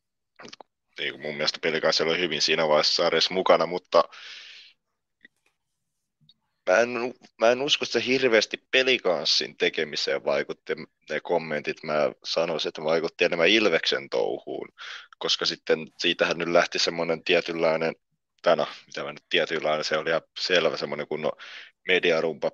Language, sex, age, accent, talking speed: Finnish, male, 30-49, native, 125 wpm